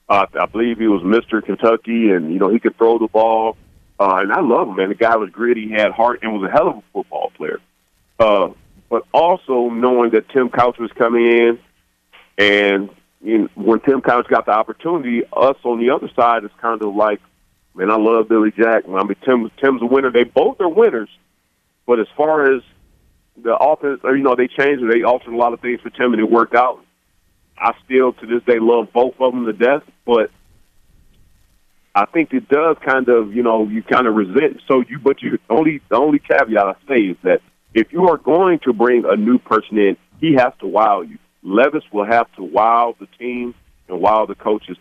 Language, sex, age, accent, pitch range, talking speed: English, male, 40-59, American, 110-125 Hz, 215 wpm